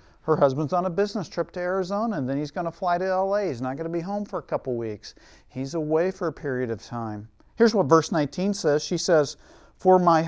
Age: 50-69